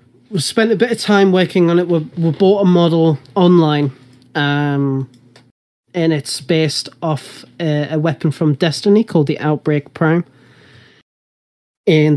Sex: male